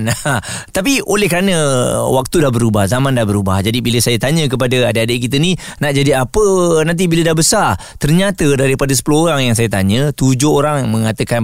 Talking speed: 180 wpm